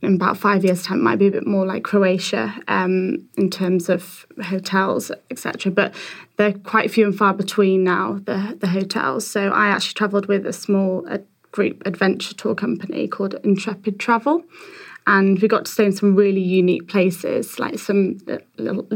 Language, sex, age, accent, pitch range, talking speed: English, female, 20-39, British, 185-205 Hz, 180 wpm